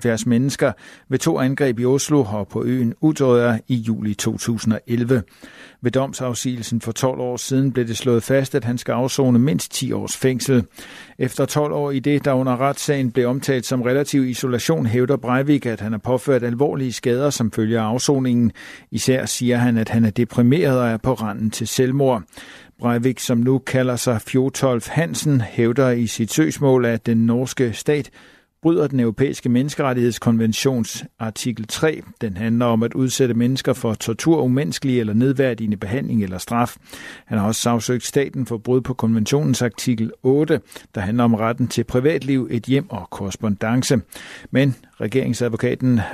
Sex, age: male, 50-69